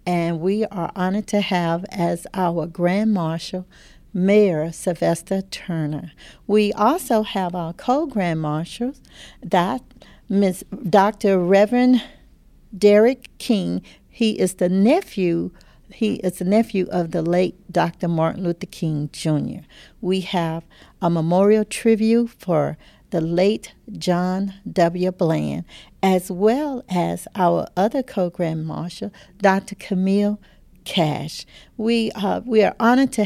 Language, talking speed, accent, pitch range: English, 125 wpm, American, 175-215 Hz